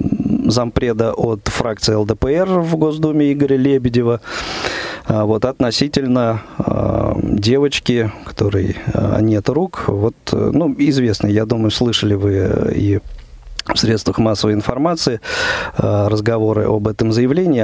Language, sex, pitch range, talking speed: Russian, male, 105-130 Hz, 110 wpm